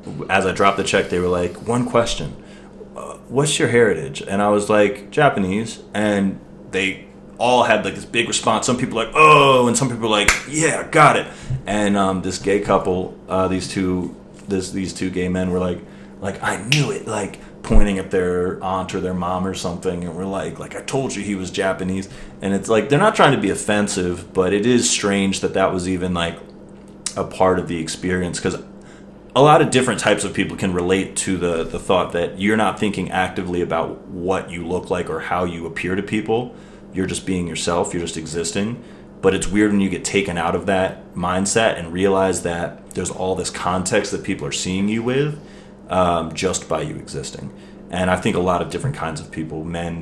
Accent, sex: American, male